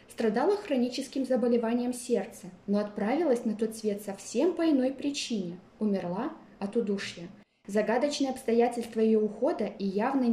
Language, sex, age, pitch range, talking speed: Russian, female, 20-39, 200-260 Hz, 130 wpm